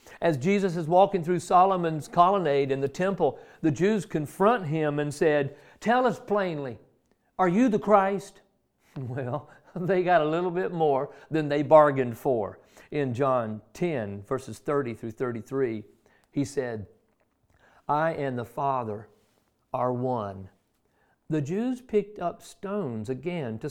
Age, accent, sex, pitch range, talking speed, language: 50-69, American, male, 125-195 Hz, 140 wpm, English